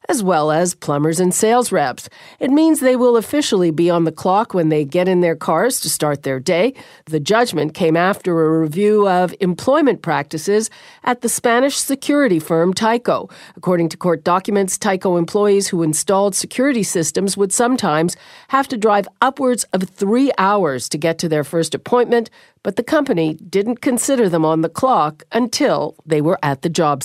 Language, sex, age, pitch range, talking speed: English, female, 50-69, 160-220 Hz, 180 wpm